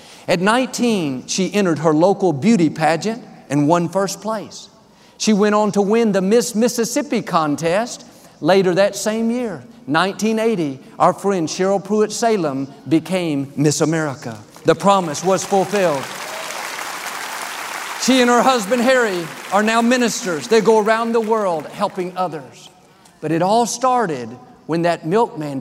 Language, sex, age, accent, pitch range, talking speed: English, male, 50-69, American, 160-220 Hz, 140 wpm